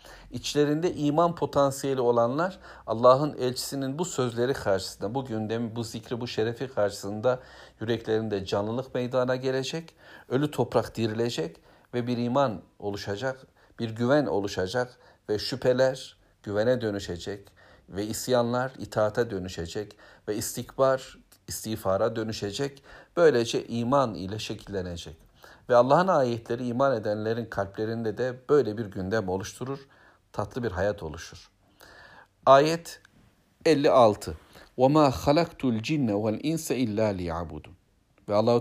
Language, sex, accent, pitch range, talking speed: Turkish, male, native, 100-130 Hz, 115 wpm